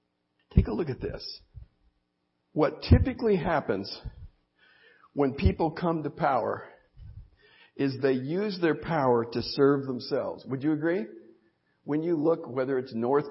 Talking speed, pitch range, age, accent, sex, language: 135 wpm, 120-165 Hz, 50-69, American, male, English